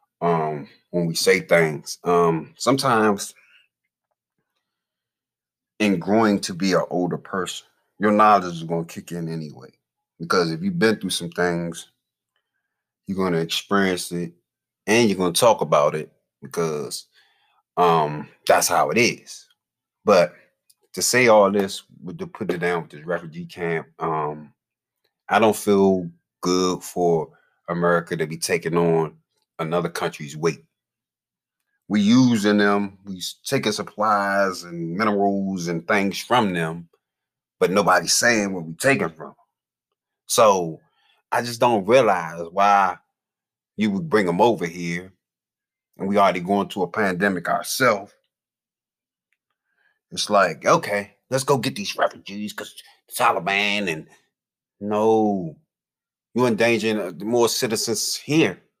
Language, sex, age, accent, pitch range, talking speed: English, male, 30-49, American, 85-105 Hz, 135 wpm